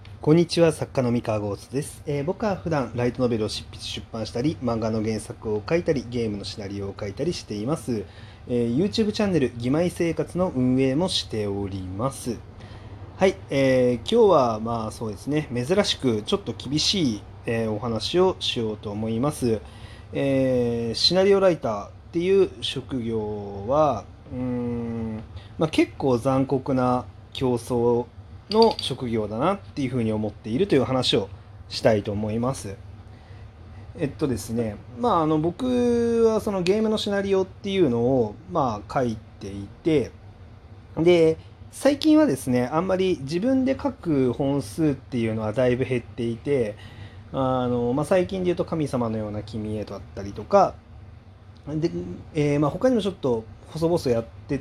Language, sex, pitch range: Japanese, male, 105-150 Hz